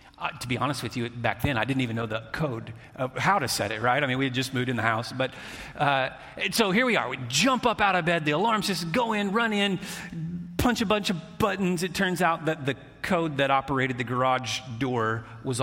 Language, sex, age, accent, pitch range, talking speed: English, male, 40-59, American, 125-165 Hz, 245 wpm